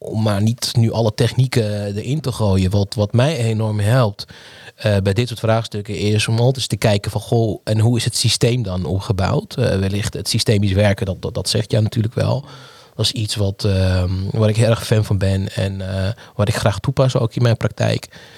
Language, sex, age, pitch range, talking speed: Dutch, male, 20-39, 100-120 Hz, 215 wpm